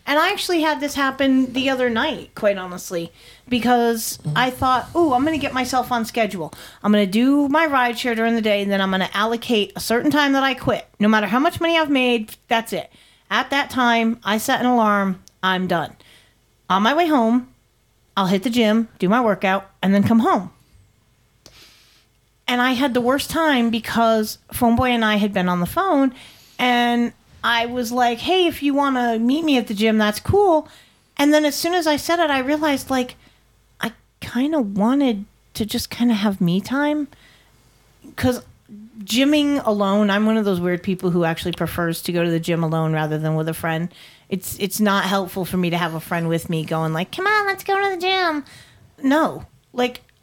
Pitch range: 195-275 Hz